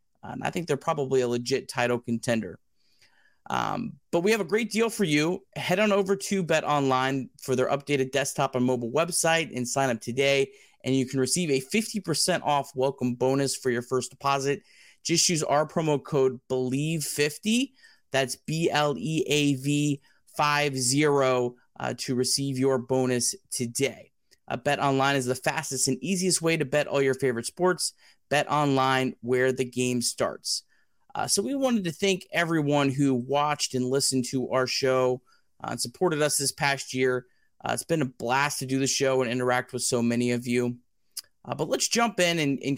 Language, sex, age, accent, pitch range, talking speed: English, male, 30-49, American, 125-155 Hz, 190 wpm